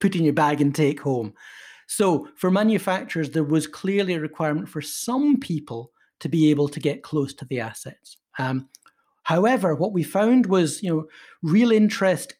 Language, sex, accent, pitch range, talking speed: English, male, British, 145-190 Hz, 180 wpm